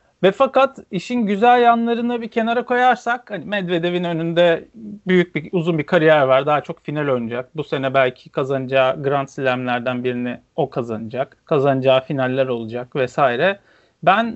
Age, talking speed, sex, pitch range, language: 40-59, 145 wpm, male, 140-190 Hz, Turkish